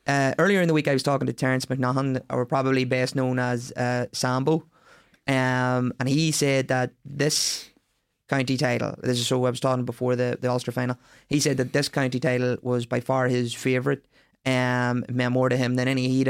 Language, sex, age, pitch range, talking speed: English, male, 20-39, 125-135 Hz, 210 wpm